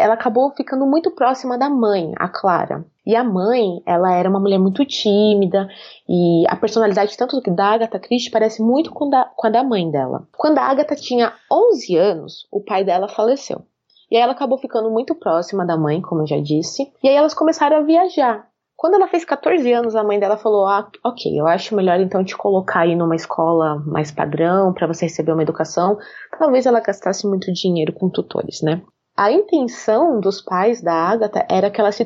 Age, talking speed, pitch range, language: 20-39, 200 wpm, 190-260 Hz, Portuguese